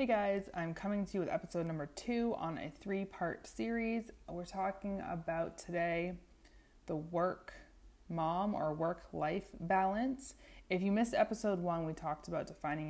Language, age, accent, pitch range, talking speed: English, 20-39, American, 145-185 Hz, 150 wpm